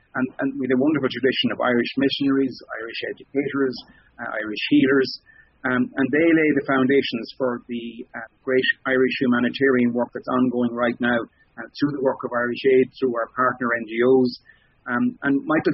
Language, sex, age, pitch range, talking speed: English, male, 30-49, 120-135 Hz, 170 wpm